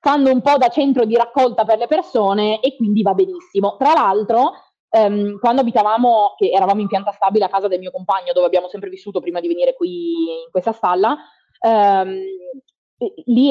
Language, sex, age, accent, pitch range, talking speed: Italian, female, 20-39, native, 200-270 Hz, 185 wpm